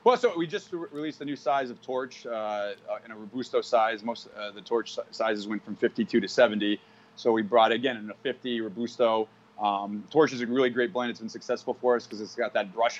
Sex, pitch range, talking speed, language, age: male, 110-130 Hz, 235 wpm, English, 30-49